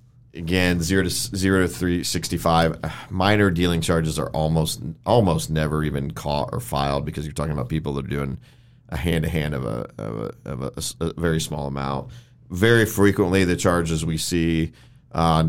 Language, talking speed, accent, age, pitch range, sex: English, 175 wpm, American, 40-59, 80-95 Hz, male